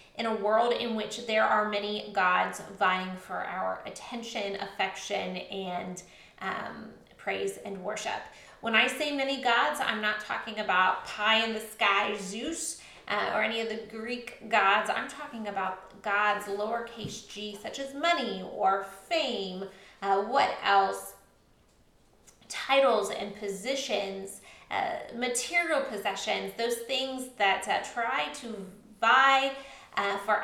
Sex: female